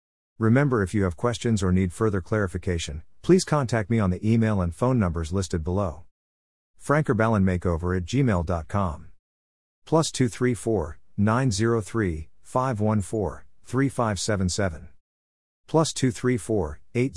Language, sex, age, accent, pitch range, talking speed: English, male, 50-69, American, 85-115 Hz, 155 wpm